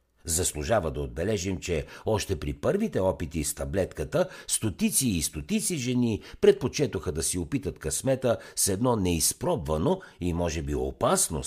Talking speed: 135 wpm